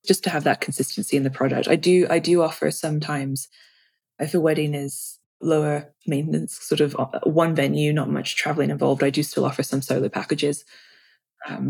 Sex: female